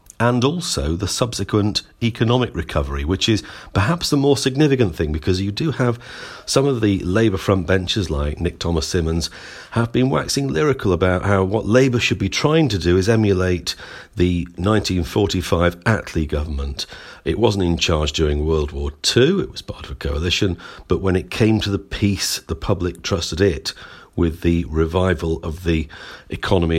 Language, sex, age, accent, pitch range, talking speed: English, male, 50-69, British, 85-110 Hz, 170 wpm